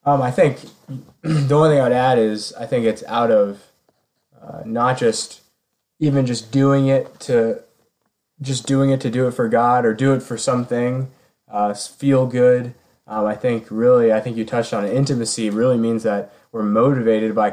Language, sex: English, male